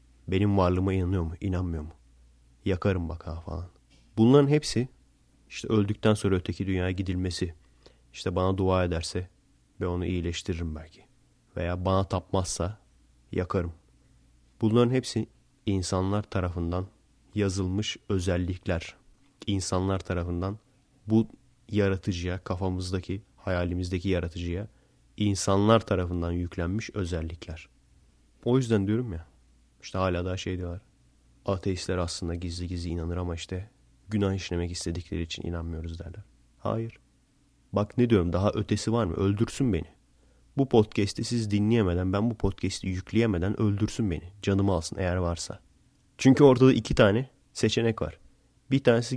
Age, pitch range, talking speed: 30-49, 85-110 Hz, 125 wpm